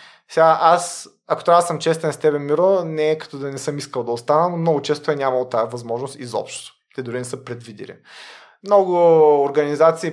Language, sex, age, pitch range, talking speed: Bulgarian, male, 20-39, 135-170 Hz, 200 wpm